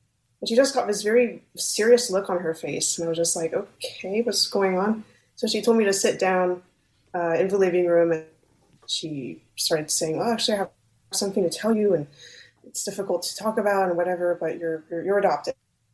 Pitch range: 160-200 Hz